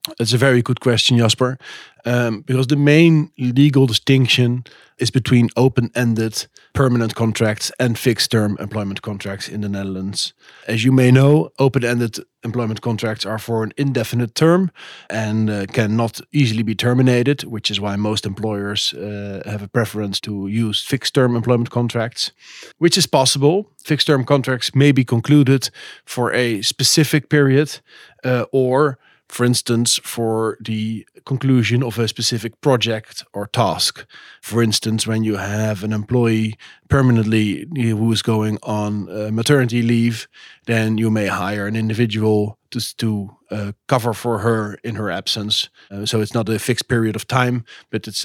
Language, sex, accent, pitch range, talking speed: English, male, Dutch, 110-130 Hz, 150 wpm